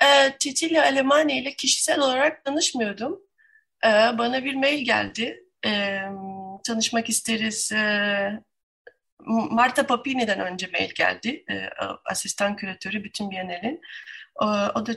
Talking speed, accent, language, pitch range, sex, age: 115 wpm, native, Turkish, 200-270 Hz, female, 30-49